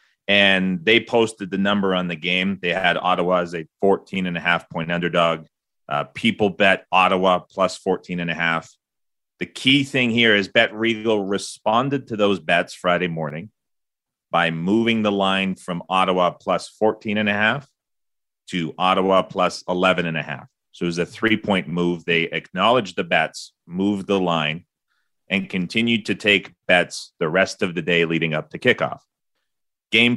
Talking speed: 175 wpm